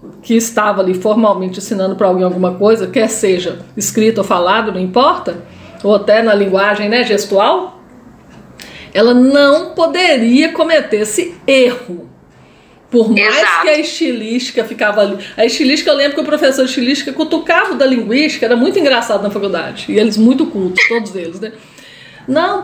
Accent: Brazilian